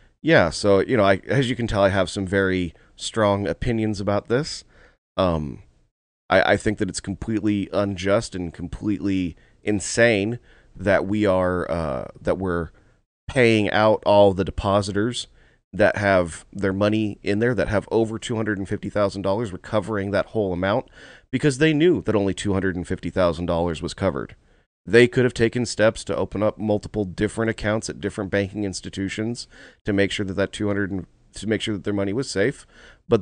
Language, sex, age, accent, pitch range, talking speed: English, male, 30-49, American, 95-110 Hz, 180 wpm